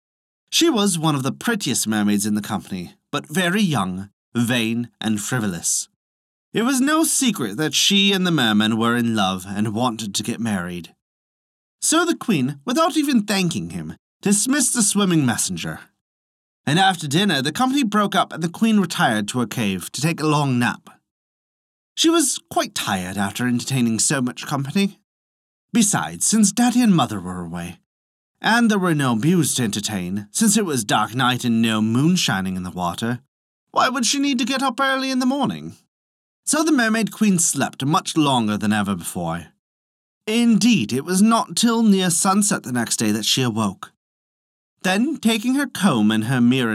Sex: male